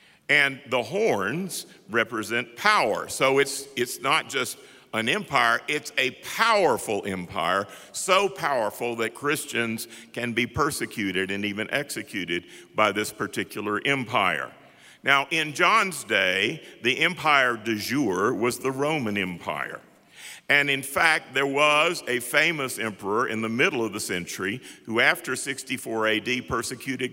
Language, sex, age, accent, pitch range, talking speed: English, male, 50-69, American, 105-140 Hz, 135 wpm